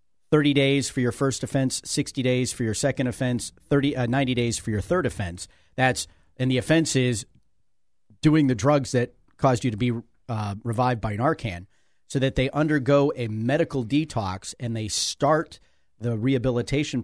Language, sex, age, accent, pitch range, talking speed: English, male, 40-59, American, 110-140 Hz, 175 wpm